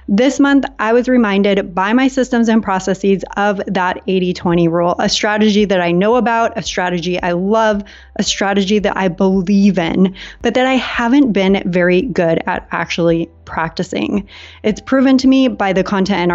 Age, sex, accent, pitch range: 20-39, female, American, 190-240 Hz